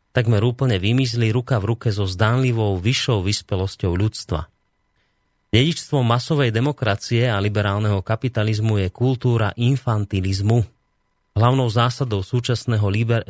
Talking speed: 105 wpm